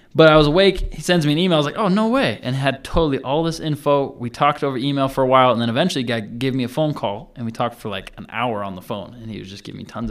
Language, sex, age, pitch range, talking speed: English, male, 20-39, 110-150 Hz, 320 wpm